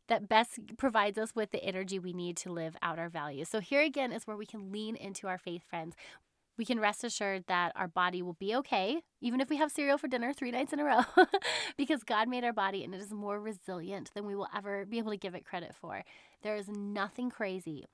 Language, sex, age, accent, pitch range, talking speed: English, female, 20-39, American, 180-245 Hz, 245 wpm